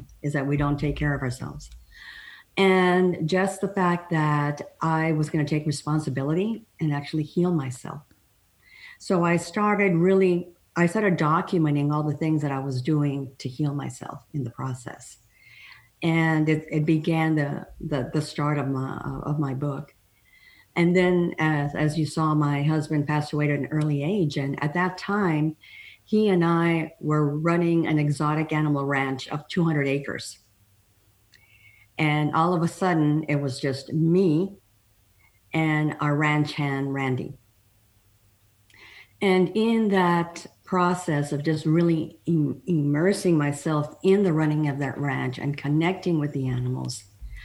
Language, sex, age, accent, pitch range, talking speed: English, female, 50-69, American, 140-170 Hz, 150 wpm